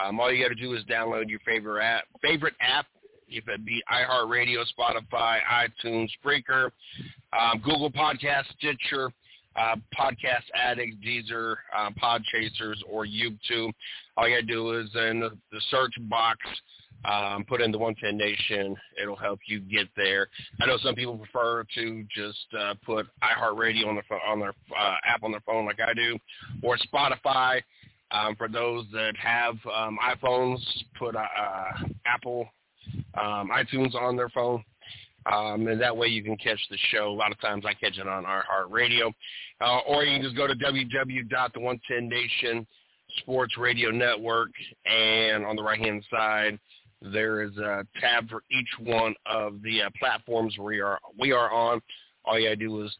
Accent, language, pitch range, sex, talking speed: American, English, 105-120 Hz, male, 175 wpm